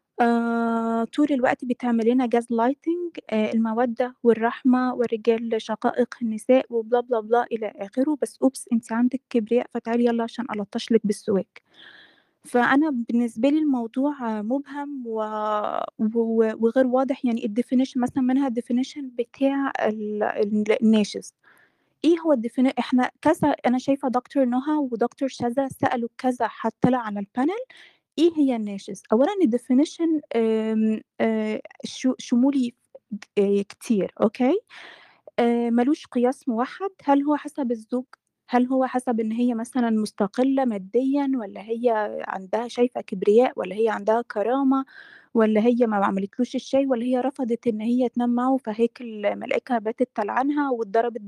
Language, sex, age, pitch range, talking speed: Arabic, female, 20-39, 230-265 Hz, 130 wpm